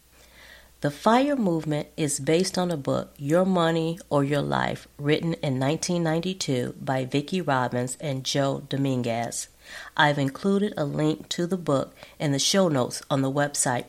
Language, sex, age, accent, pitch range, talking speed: English, female, 40-59, American, 140-190 Hz, 155 wpm